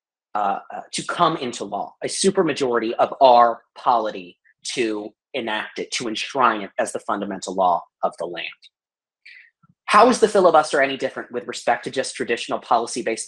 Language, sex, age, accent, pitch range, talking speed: English, male, 30-49, American, 125-195 Hz, 165 wpm